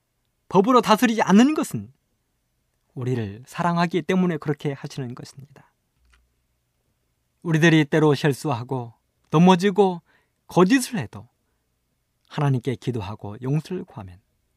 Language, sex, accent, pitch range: Korean, male, native, 115-180 Hz